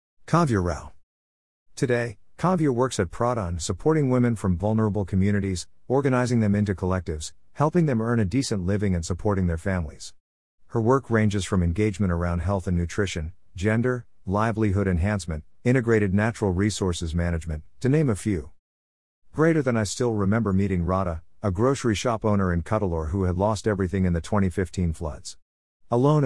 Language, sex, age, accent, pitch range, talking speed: English, male, 50-69, American, 90-115 Hz, 160 wpm